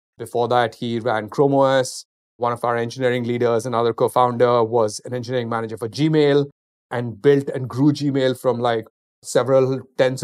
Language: English